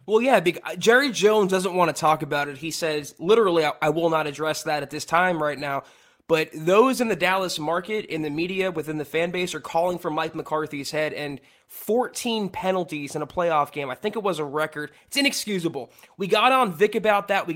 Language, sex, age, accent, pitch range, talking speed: English, male, 20-39, American, 160-210 Hz, 220 wpm